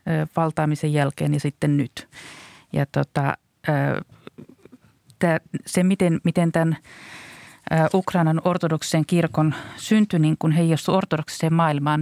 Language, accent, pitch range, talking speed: Finnish, native, 145-165 Hz, 95 wpm